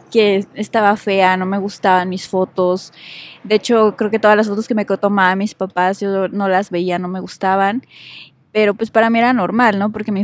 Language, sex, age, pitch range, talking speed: Spanish, female, 20-39, 185-215 Hz, 205 wpm